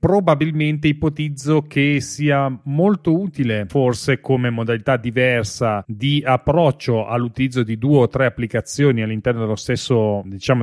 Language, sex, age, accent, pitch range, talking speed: Italian, male, 30-49, native, 120-150 Hz, 125 wpm